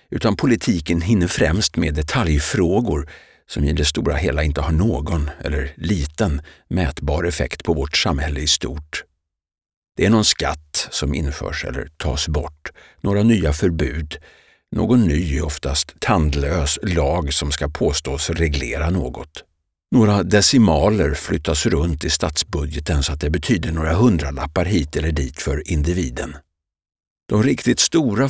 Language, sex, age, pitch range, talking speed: Swedish, male, 60-79, 75-90 Hz, 140 wpm